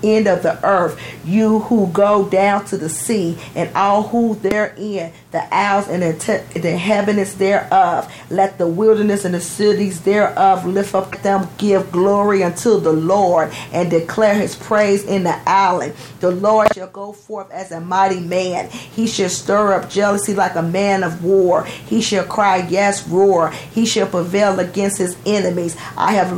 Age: 40-59